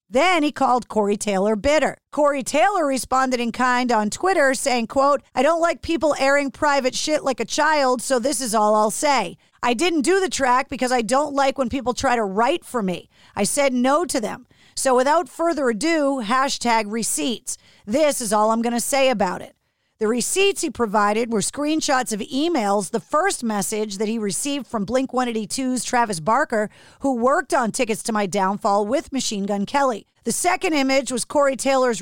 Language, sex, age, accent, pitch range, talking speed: English, female, 40-59, American, 225-280 Hz, 190 wpm